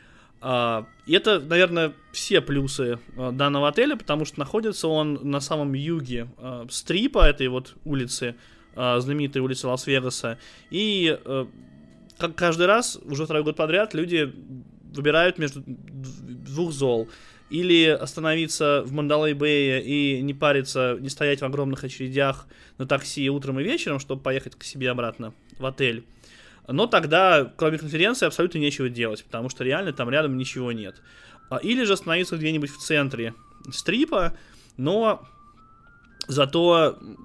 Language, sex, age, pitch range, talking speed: Russian, male, 20-39, 125-155 Hz, 130 wpm